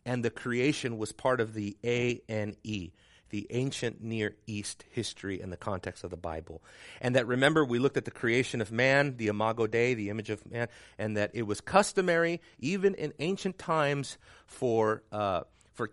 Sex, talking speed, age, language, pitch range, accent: male, 180 wpm, 40-59, English, 110-165 Hz, American